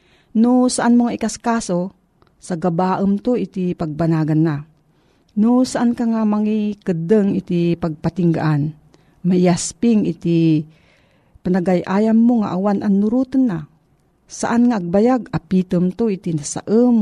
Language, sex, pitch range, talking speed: Filipino, female, 165-205 Hz, 115 wpm